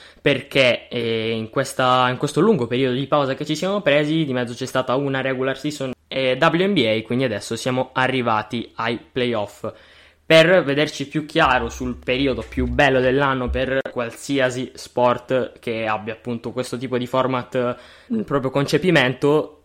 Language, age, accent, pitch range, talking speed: Italian, 10-29, native, 115-140 Hz, 150 wpm